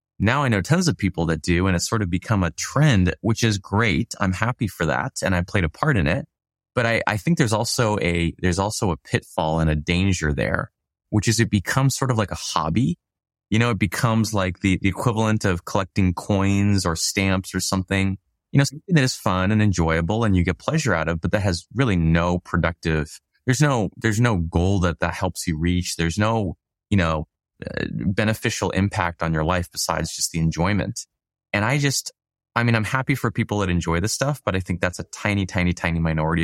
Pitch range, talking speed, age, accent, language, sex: 85-110 Hz, 220 wpm, 20-39, American, English, male